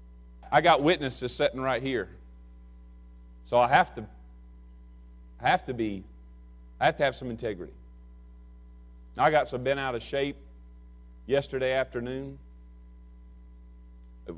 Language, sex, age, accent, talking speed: English, male, 40-59, American, 125 wpm